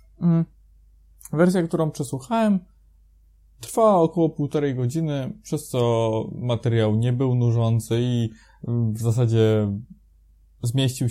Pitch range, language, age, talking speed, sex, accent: 115-160 Hz, Polish, 20-39, 90 wpm, male, native